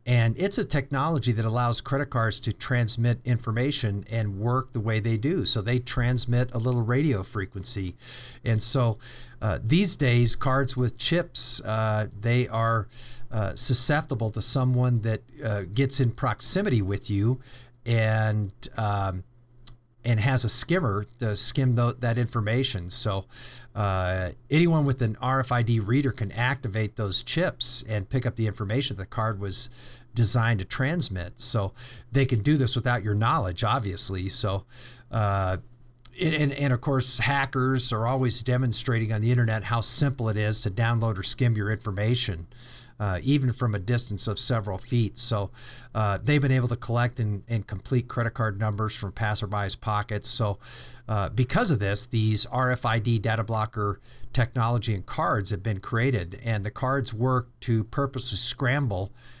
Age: 50-69